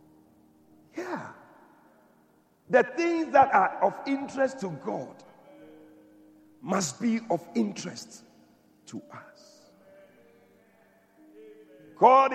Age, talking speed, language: 50-69, 80 wpm, English